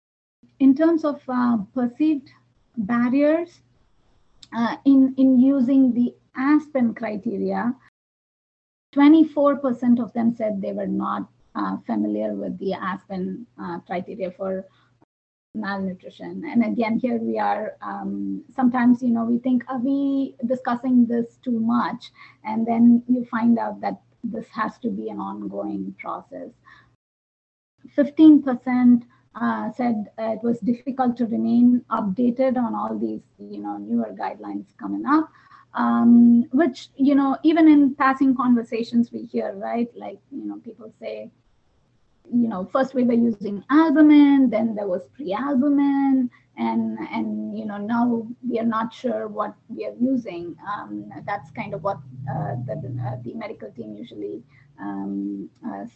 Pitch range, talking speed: 195-260 Hz, 140 wpm